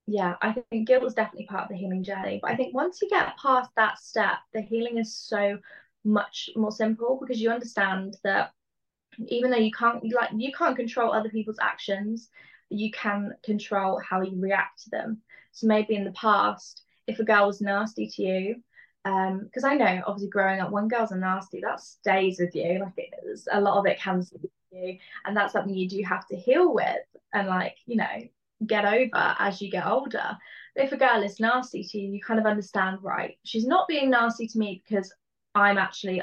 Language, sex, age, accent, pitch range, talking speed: English, female, 20-39, British, 195-230 Hz, 210 wpm